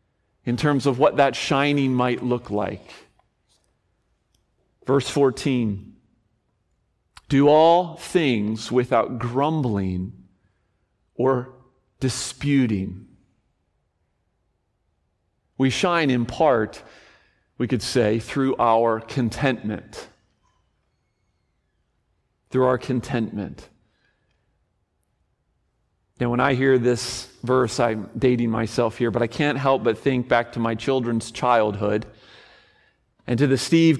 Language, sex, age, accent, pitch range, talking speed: English, male, 40-59, American, 120-150 Hz, 100 wpm